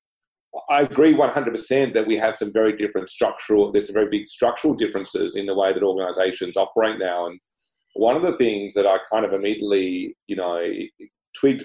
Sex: male